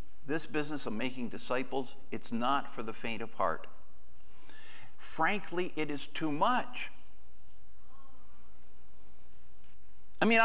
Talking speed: 110 wpm